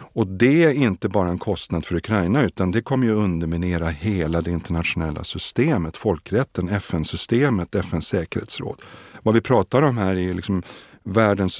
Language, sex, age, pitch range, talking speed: Swedish, male, 50-69, 90-120 Hz, 145 wpm